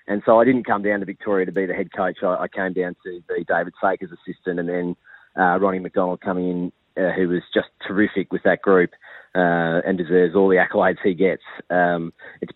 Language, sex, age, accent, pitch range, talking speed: English, male, 30-49, Australian, 95-110 Hz, 220 wpm